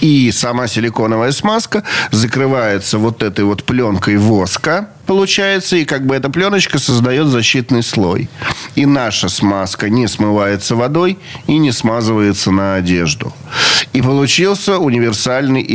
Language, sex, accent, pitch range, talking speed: Russian, male, native, 115-150 Hz, 125 wpm